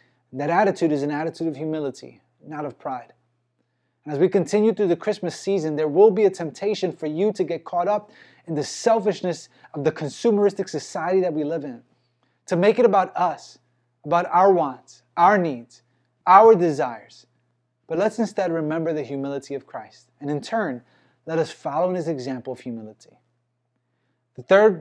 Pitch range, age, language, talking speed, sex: 130-185 Hz, 20-39, English, 175 wpm, male